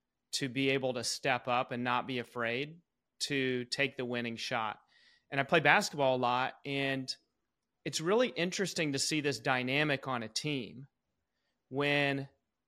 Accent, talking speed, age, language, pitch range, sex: American, 155 wpm, 30-49, English, 125-145 Hz, male